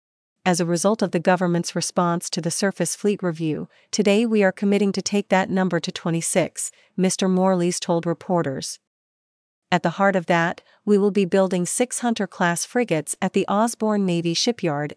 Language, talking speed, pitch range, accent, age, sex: English, 170 wpm, 170-200 Hz, American, 40-59, female